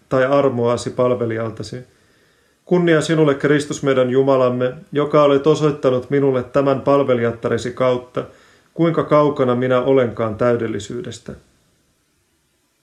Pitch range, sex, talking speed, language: 120-140 Hz, male, 95 wpm, Finnish